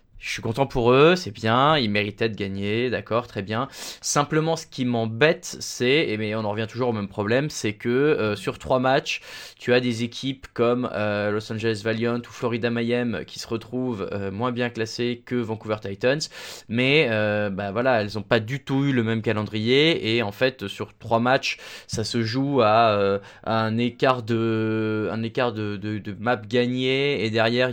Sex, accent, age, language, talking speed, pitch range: male, French, 20-39, French, 200 wpm, 105-125 Hz